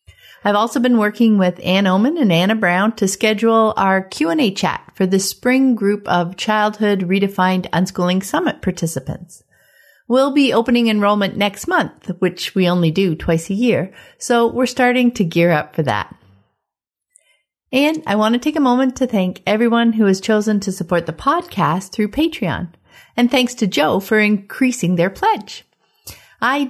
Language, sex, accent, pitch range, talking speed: English, female, American, 175-240 Hz, 165 wpm